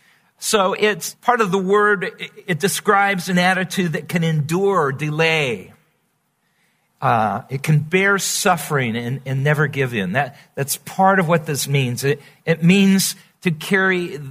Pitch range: 135-180 Hz